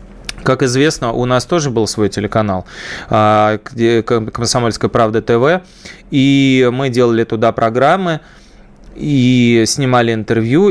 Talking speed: 105 wpm